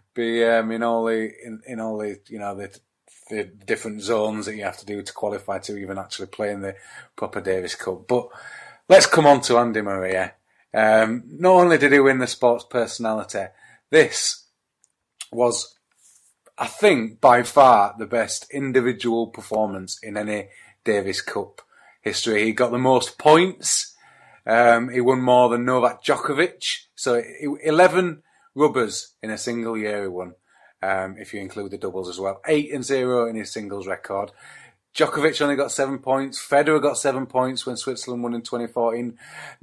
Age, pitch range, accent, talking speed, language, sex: 30-49, 105-140 Hz, British, 170 wpm, English, male